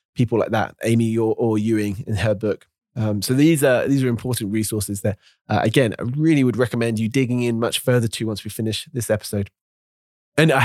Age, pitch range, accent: 20-39, 110-135 Hz, British